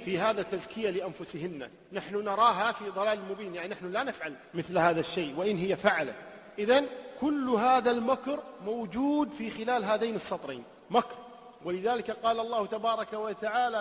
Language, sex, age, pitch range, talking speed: Arabic, male, 50-69, 200-255 Hz, 150 wpm